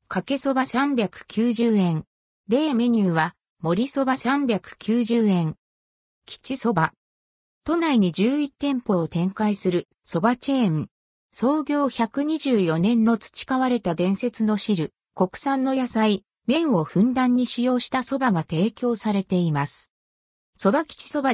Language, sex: Japanese, female